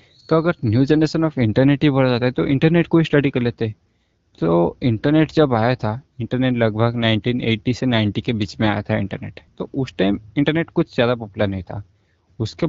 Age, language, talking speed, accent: 20-39, Hindi, 205 wpm, native